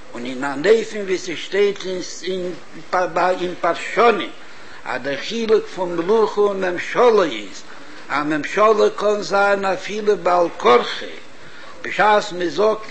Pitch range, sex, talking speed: 180-220 Hz, male, 75 wpm